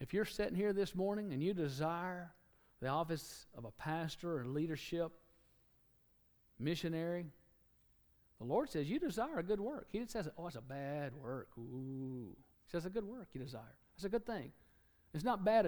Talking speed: 180 wpm